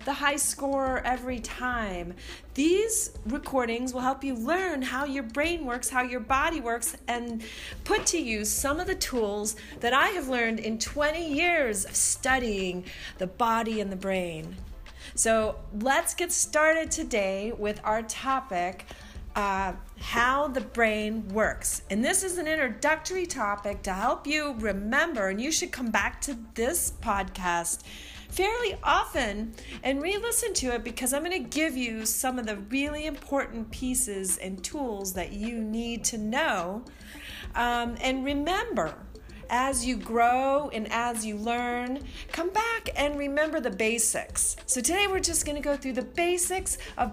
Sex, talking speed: female, 160 wpm